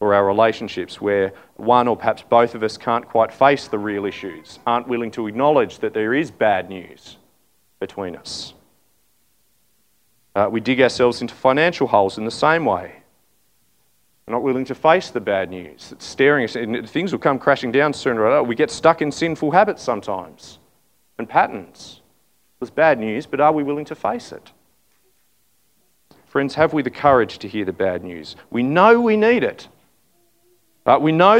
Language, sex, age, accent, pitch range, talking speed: English, male, 40-59, Australian, 120-165 Hz, 175 wpm